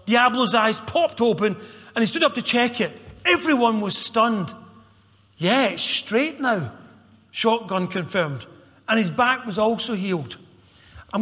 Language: English